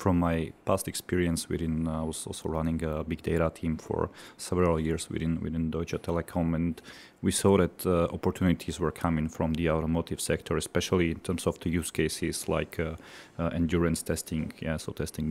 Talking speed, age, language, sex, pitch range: 190 wpm, 30-49, Slovak, male, 80-90 Hz